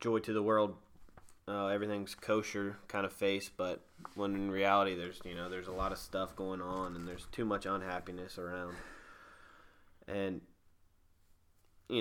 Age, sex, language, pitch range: 20-39, male, English, 90-105 Hz